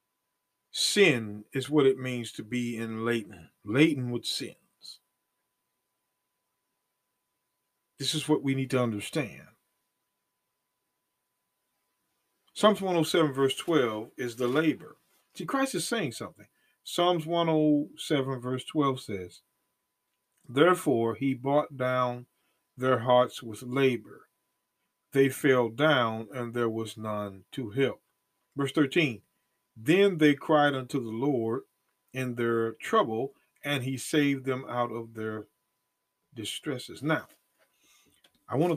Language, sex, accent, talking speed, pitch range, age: English, male, American, 120 wpm, 110-140 Hz, 40-59